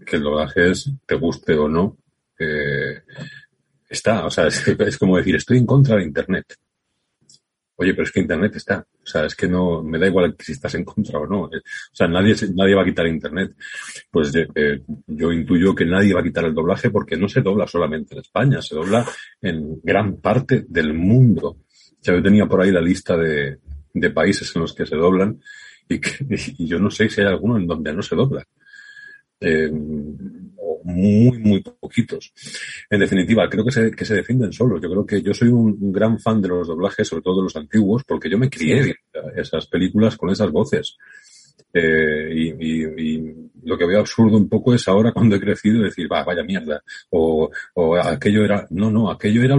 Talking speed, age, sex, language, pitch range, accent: 205 wpm, 40-59, male, Spanish, 80-110 Hz, Spanish